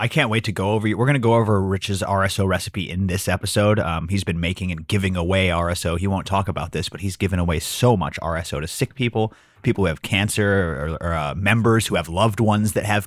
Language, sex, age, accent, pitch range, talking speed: English, male, 30-49, American, 95-120 Hz, 250 wpm